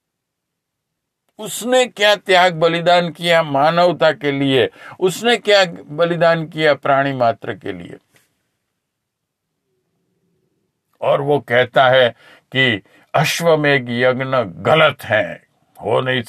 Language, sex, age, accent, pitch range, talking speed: Hindi, male, 50-69, native, 130-190 Hz, 100 wpm